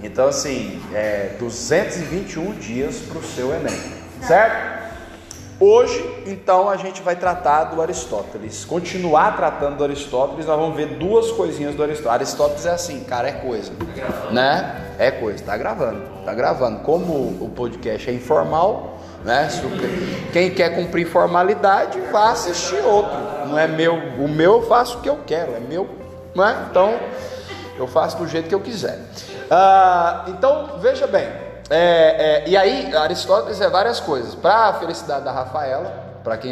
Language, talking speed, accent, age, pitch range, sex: Portuguese, 160 wpm, Brazilian, 20-39, 120-180 Hz, male